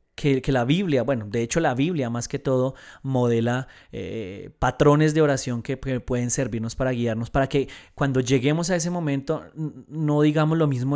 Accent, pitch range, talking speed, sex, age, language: Colombian, 120-140 Hz, 180 wpm, male, 20-39, Spanish